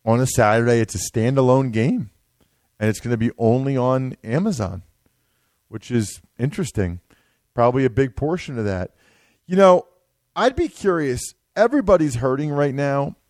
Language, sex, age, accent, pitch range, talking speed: English, male, 40-59, American, 115-145 Hz, 145 wpm